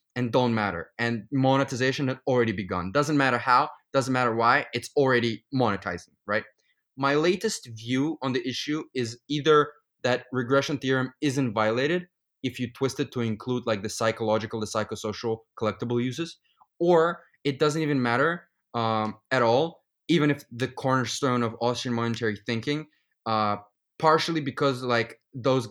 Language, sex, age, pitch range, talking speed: English, male, 20-39, 110-135 Hz, 150 wpm